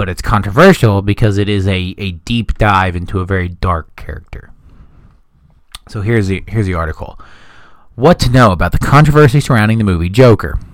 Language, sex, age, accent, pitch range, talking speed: English, male, 20-39, American, 100-125 Hz, 170 wpm